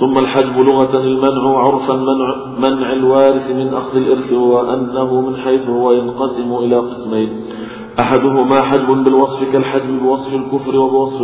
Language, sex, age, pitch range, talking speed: Arabic, male, 40-59, 125-135 Hz, 135 wpm